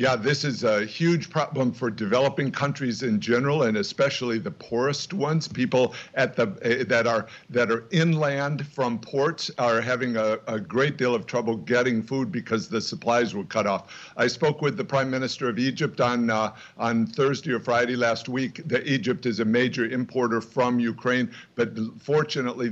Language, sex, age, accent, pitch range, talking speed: English, male, 60-79, American, 115-140 Hz, 180 wpm